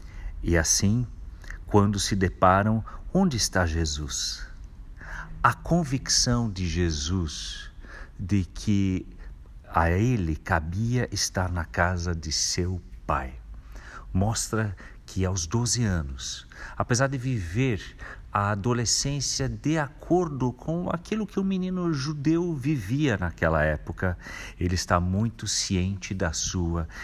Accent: Brazilian